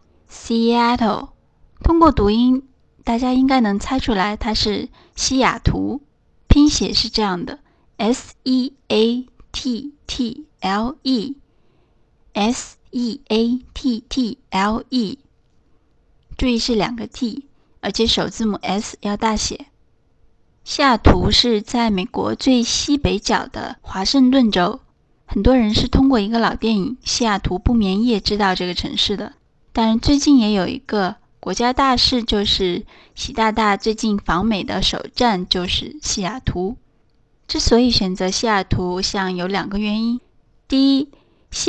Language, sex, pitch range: Chinese, female, 200-255 Hz